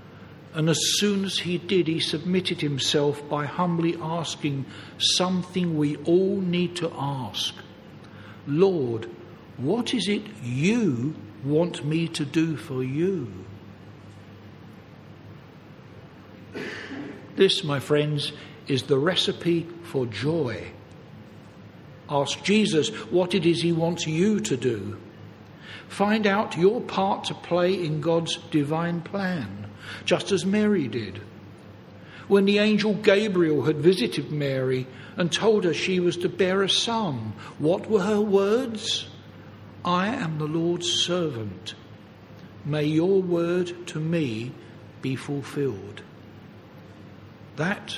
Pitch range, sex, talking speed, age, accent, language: 125-175 Hz, male, 120 wpm, 60-79, British, English